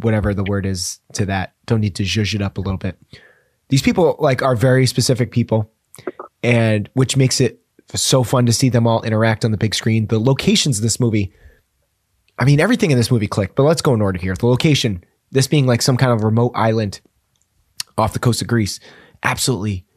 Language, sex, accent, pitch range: English, male, American, 105-135 Hz